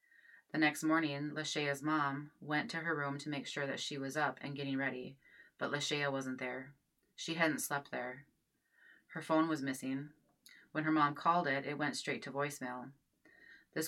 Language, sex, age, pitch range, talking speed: English, female, 20-39, 135-155 Hz, 180 wpm